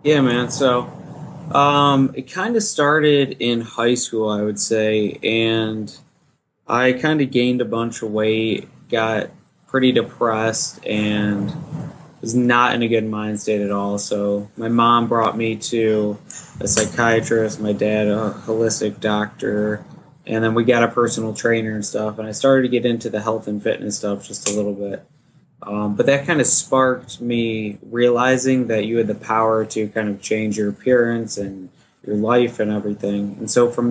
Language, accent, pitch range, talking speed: English, American, 105-125 Hz, 175 wpm